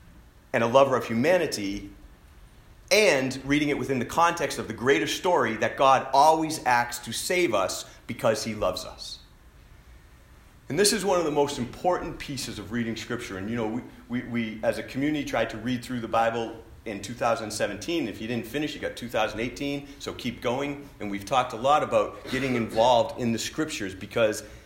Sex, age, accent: male, 40-59, American